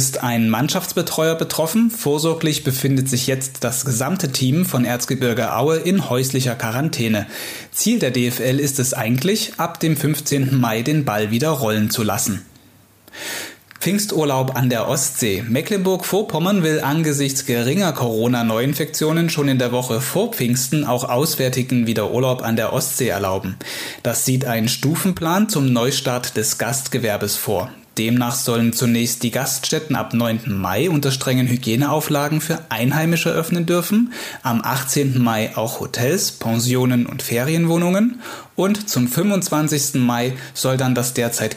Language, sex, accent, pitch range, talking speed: German, male, German, 120-155 Hz, 140 wpm